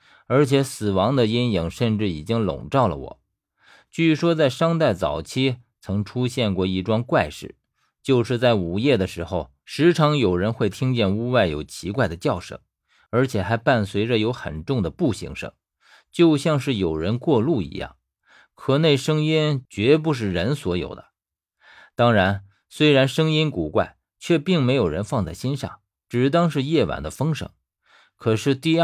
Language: Chinese